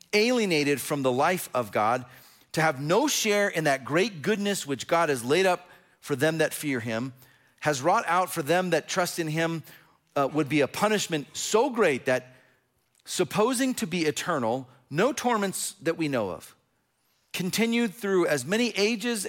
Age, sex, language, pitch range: 40-59, male, English, 145-200 Hz